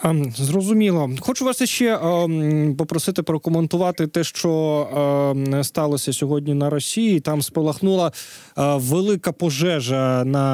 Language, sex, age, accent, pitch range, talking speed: Ukrainian, male, 20-39, native, 135-175 Hz, 115 wpm